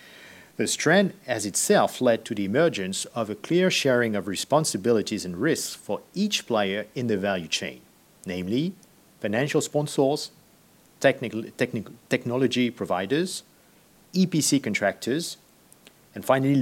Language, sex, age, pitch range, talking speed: French, male, 50-69, 110-160 Hz, 115 wpm